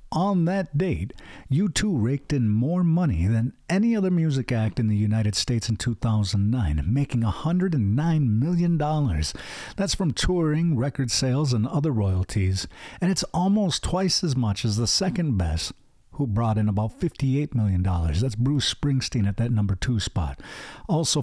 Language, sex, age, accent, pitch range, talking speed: English, male, 50-69, American, 110-150 Hz, 155 wpm